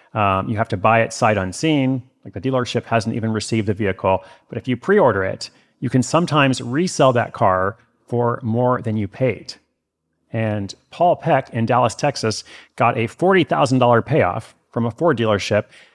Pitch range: 105-135 Hz